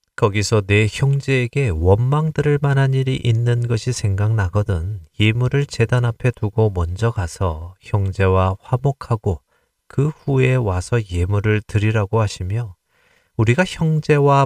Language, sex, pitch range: Korean, male, 95-125 Hz